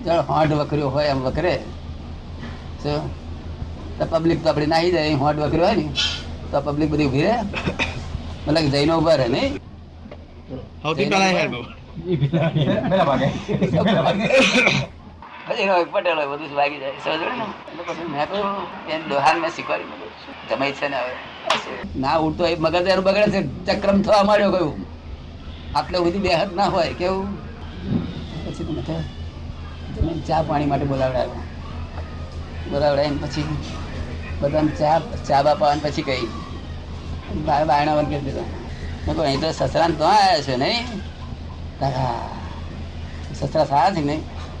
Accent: native